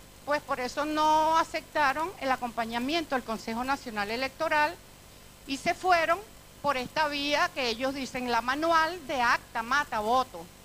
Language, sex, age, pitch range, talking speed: Spanish, female, 50-69, 240-300 Hz, 145 wpm